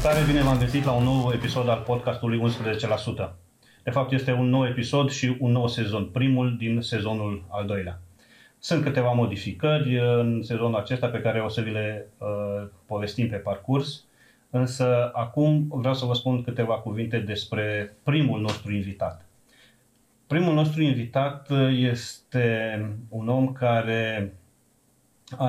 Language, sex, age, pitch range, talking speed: Romanian, male, 30-49, 105-125 Hz, 145 wpm